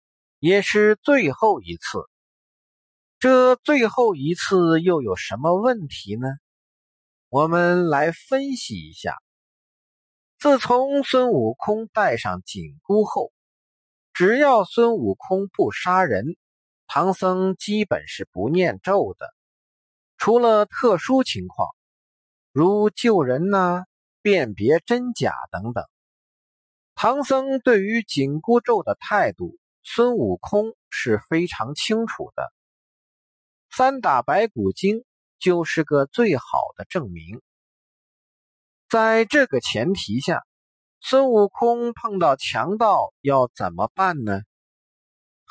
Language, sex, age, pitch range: Chinese, male, 50-69, 165-240 Hz